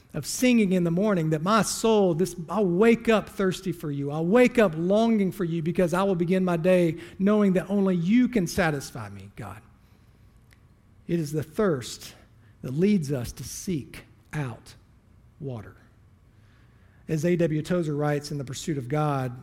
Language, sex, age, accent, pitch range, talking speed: English, male, 40-59, American, 125-190 Hz, 170 wpm